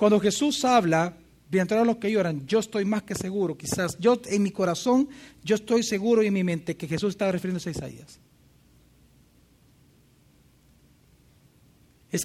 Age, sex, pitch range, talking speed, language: 40-59, male, 175-230 Hz, 155 wpm, Spanish